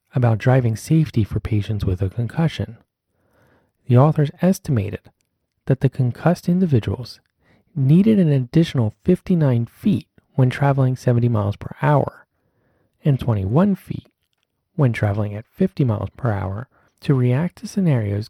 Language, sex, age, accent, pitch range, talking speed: English, male, 30-49, American, 110-150 Hz, 130 wpm